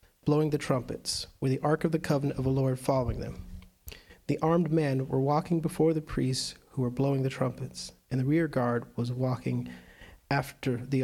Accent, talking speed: American, 190 wpm